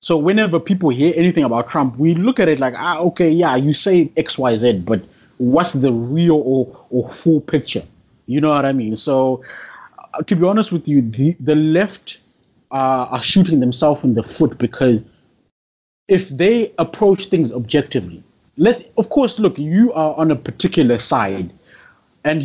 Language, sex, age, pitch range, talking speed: English, male, 30-49, 130-170 Hz, 180 wpm